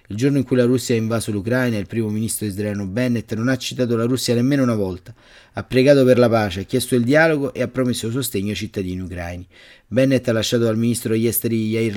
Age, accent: 30-49, native